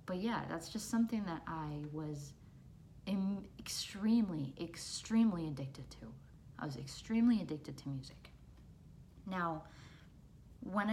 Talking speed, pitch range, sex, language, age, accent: 110 wpm, 155-195 Hz, female, English, 30-49, American